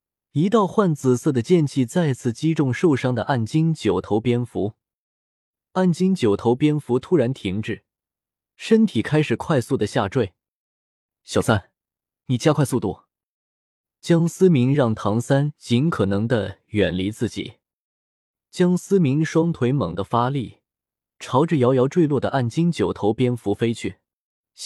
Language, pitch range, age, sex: Chinese, 110-160 Hz, 20-39, male